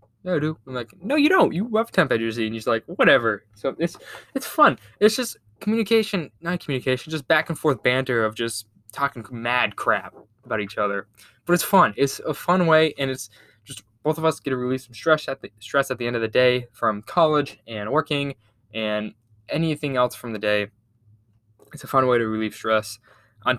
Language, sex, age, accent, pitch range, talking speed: English, male, 10-29, American, 110-140 Hz, 215 wpm